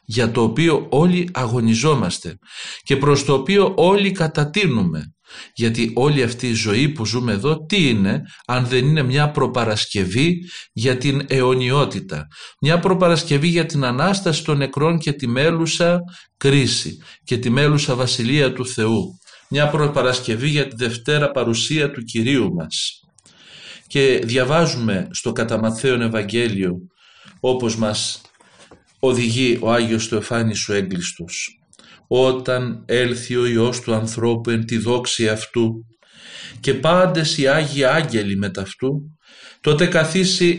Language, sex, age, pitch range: Greek, male, 50-69, 115-155 Hz